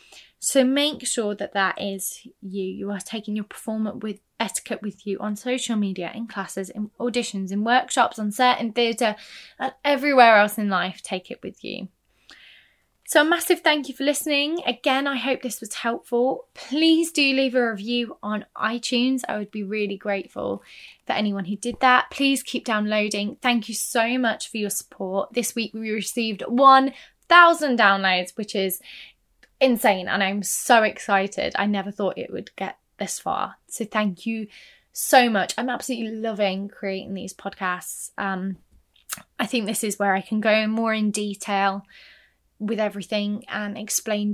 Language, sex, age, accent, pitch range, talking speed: English, female, 20-39, British, 200-245 Hz, 170 wpm